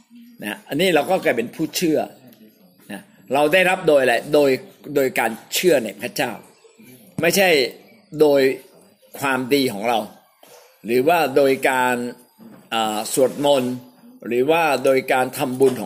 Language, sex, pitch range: Thai, male, 125-210 Hz